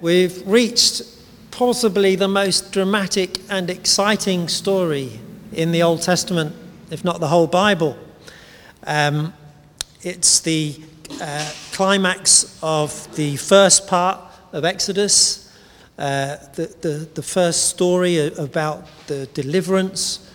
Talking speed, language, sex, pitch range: 110 wpm, English, male, 145-175 Hz